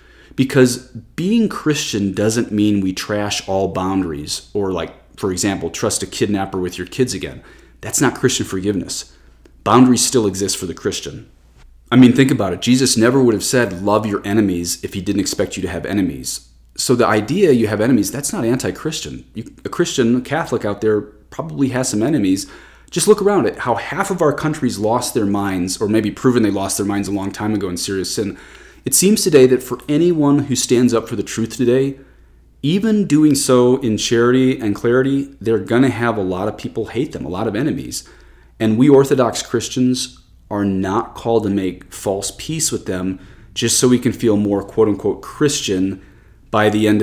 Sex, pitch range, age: male, 95-125 Hz, 30-49